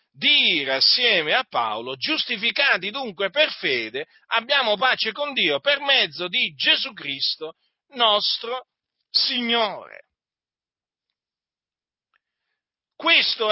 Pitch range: 155-255 Hz